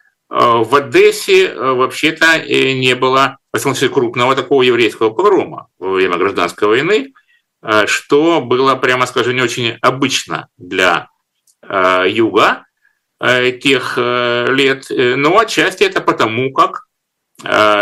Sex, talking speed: male, 115 wpm